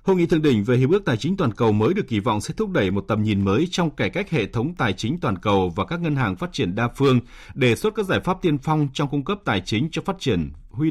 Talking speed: 305 wpm